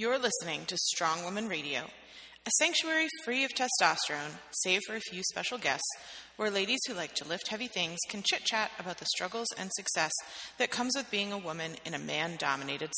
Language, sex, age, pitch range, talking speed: English, female, 30-49, 175-235 Hz, 190 wpm